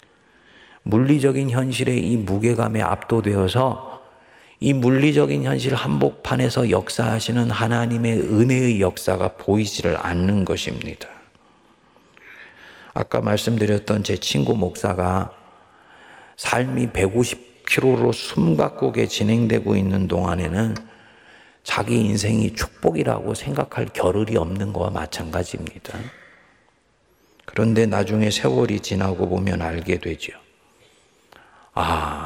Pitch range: 95-120 Hz